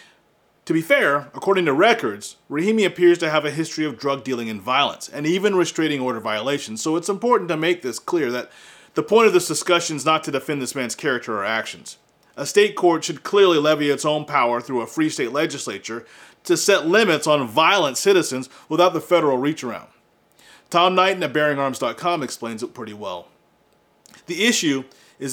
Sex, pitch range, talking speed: male, 135-175 Hz, 190 wpm